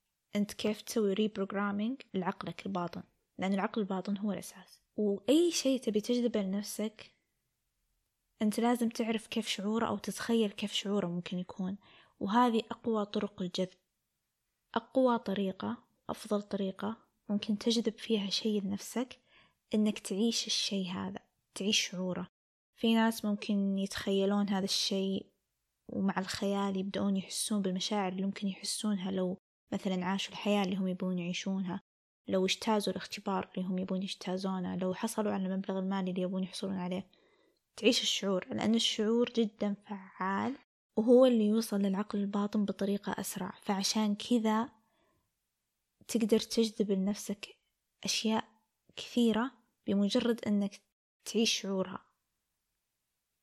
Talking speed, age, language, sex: 120 wpm, 20-39, Arabic, female